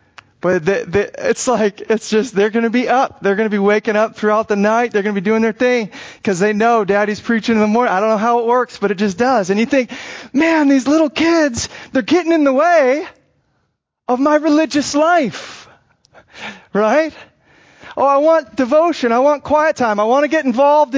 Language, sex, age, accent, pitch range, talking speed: English, male, 30-49, American, 190-255 Hz, 210 wpm